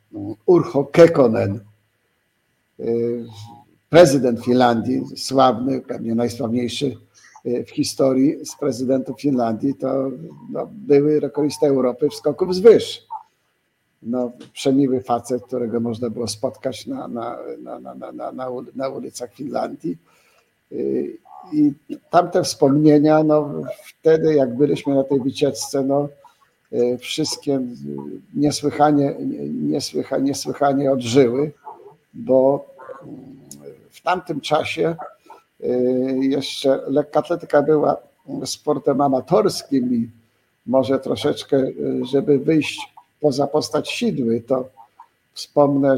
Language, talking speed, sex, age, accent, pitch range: Polish, 95 wpm, male, 50-69, native, 125-150 Hz